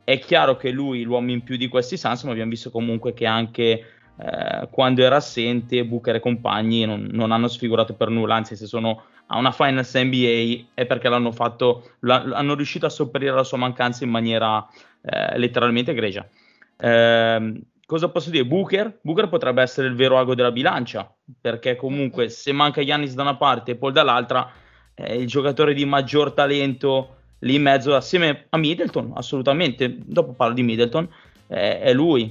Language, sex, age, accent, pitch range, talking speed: Italian, male, 20-39, native, 120-140 Hz, 180 wpm